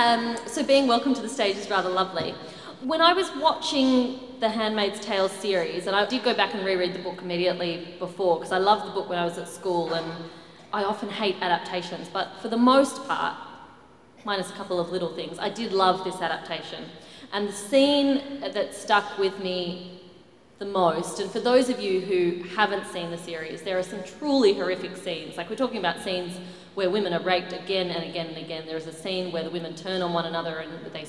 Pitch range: 170-210 Hz